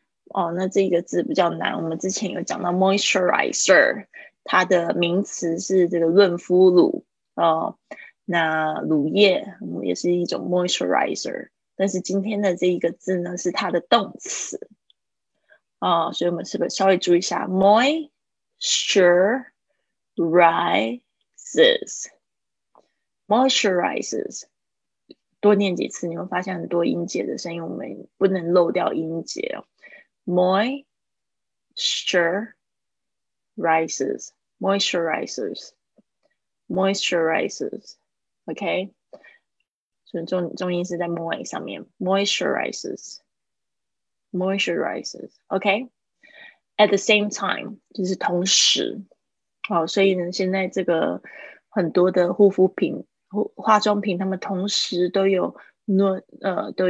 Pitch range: 175-205 Hz